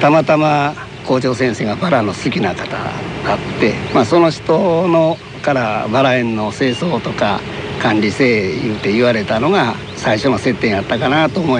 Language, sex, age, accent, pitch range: Japanese, male, 60-79, native, 110-145 Hz